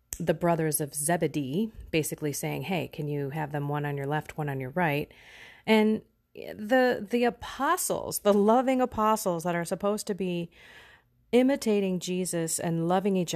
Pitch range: 150-195 Hz